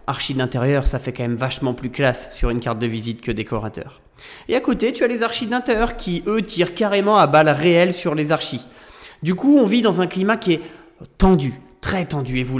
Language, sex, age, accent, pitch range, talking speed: French, male, 20-39, French, 140-220 Hz, 230 wpm